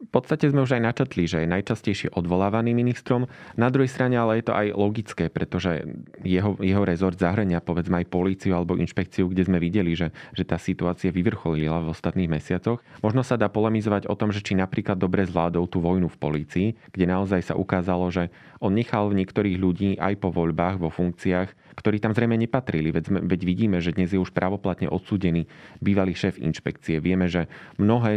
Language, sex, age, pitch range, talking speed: Slovak, male, 30-49, 90-105 Hz, 190 wpm